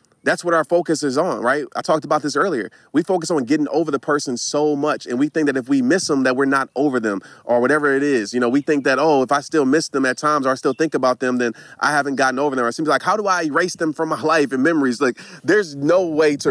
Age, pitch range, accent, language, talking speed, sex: 30-49, 135-175 Hz, American, English, 295 wpm, male